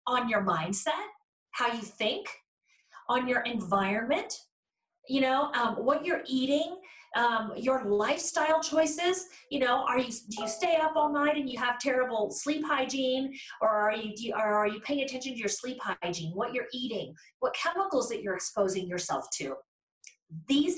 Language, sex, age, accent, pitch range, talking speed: English, female, 40-59, American, 210-290 Hz, 175 wpm